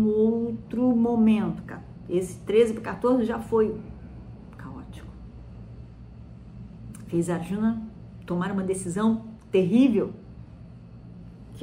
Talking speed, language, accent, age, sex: 95 wpm, Portuguese, Brazilian, 50-69, female